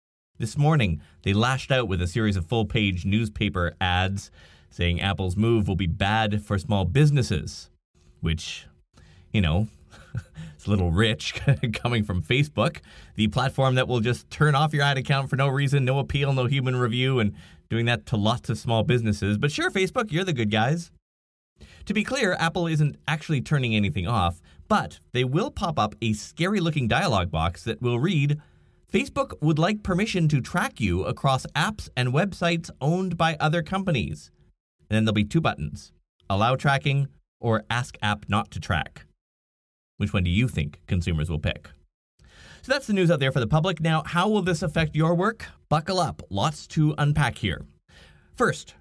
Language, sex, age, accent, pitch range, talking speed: English, male, 30-49, American, 95-155 Hz, 180 wpm